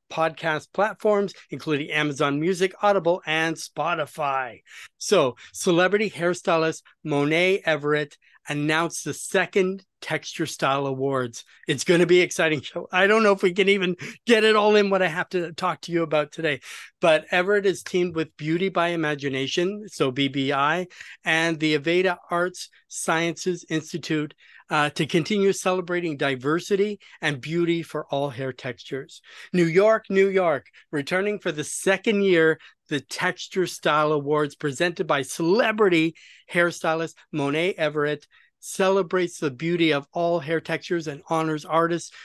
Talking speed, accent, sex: 145 wpm, American, male